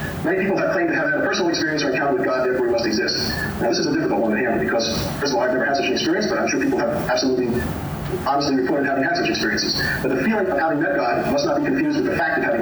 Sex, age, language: male, 40-59, English